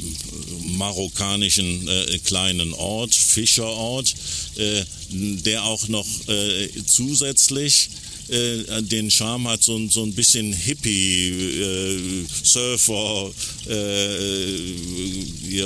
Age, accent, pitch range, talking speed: 50-69, German, 95-110 Hz, 90 wpm